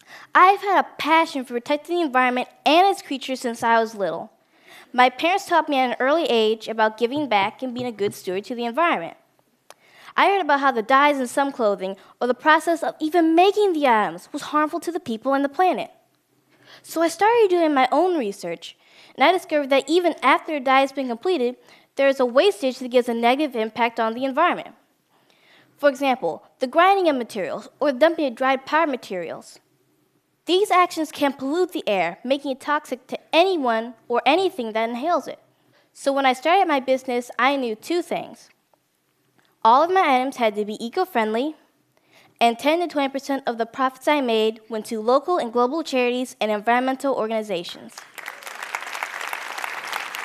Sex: female